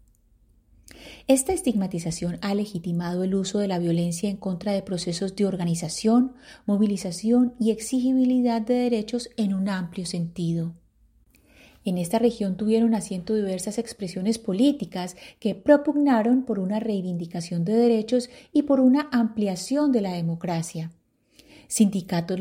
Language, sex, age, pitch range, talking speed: Spanish, female, 30-49, 175-240 Hz, 125 wpm